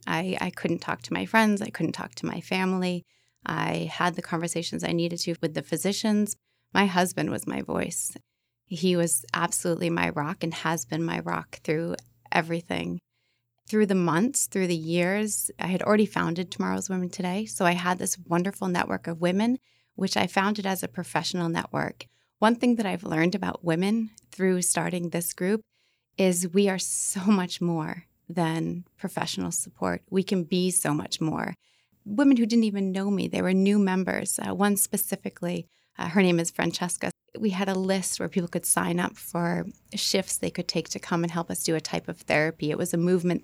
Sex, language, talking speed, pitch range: female, English, 195 wpm, 170-200 Hz